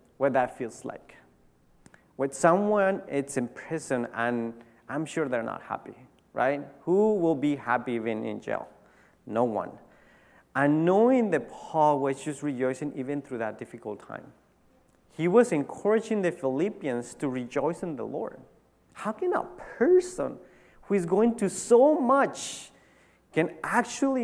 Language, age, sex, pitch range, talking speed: English, 40-59, male, 135-210 Hz, 145 wpm